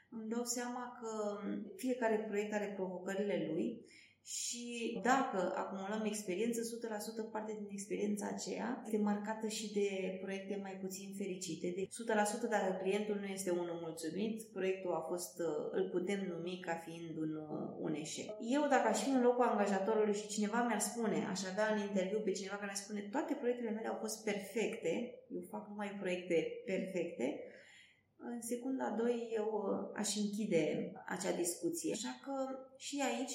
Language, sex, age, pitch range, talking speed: Romanian, female, 20-39, 195-240 Hz, 160 wpm